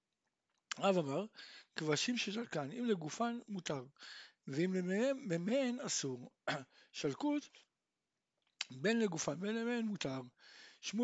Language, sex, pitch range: Hebrew, male, 155-225 Hz